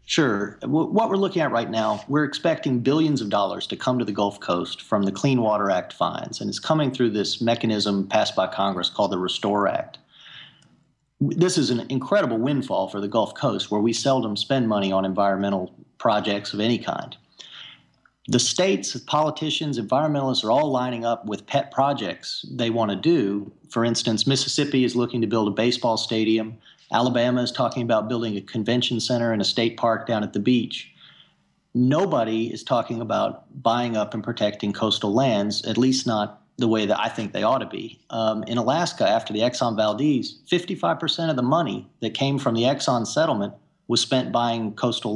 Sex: male